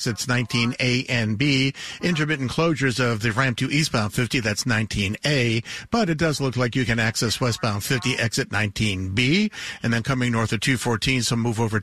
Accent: American